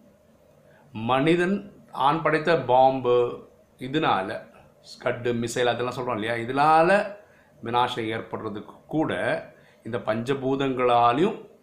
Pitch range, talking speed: 105-140 Hz, 70 wpm